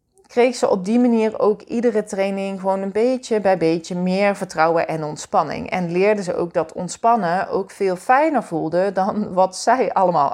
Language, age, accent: Dutch, 30-49, Dutch